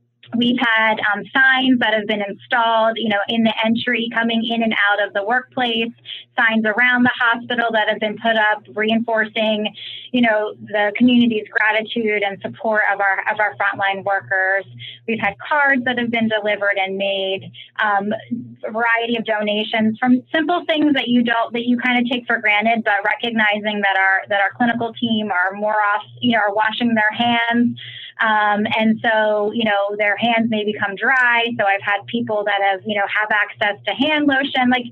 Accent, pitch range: American, 200-235 Hz